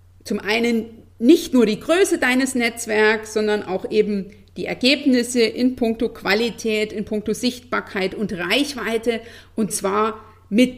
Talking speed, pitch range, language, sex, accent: 135 wpm, 205-250 Hz, German, female, German